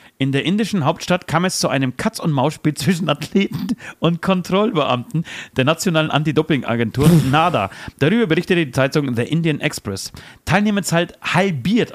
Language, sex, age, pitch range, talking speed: German, male, 40-59, 140-190 Hz, 130 wpm